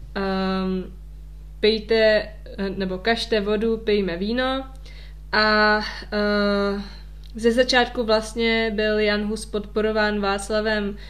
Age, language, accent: 20-39, Czech, native